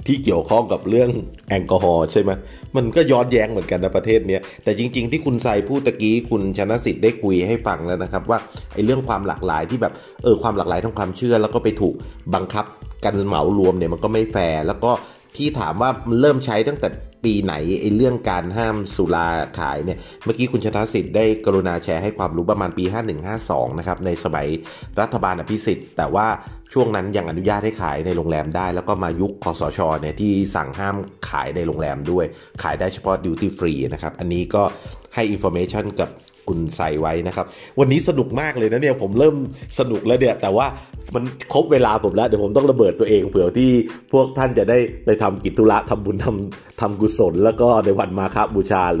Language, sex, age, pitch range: Thai, male, 30-49, 90-115 Hz